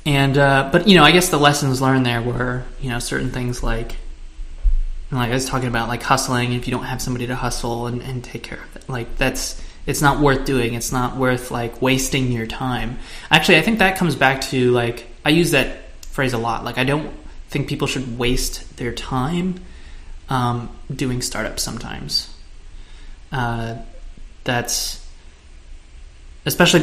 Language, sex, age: English, male, 20-39